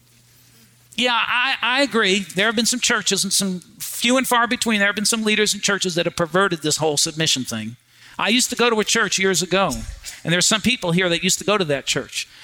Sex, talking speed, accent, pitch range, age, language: male, 240 wpm, American, 155-195 Hz, 50-69, English